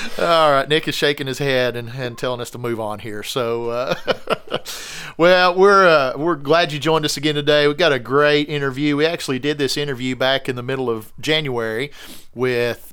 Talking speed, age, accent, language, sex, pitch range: 205 wpm, 40-59, American, English, male, 125-145 Hz